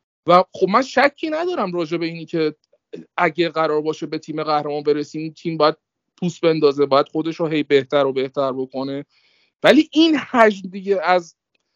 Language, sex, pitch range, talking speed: Persian, male, 155-220 Hz, 170 wpm